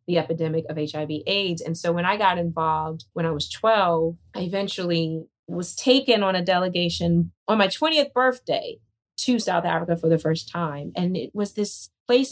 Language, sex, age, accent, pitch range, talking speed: English, female, 30-49, American, 165-235 Hz, 185 wpm